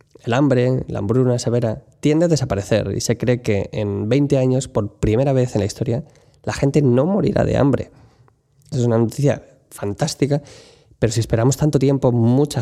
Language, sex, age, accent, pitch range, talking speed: English, male, 20-39, Spanish, 115-140 Hz, 175 wpm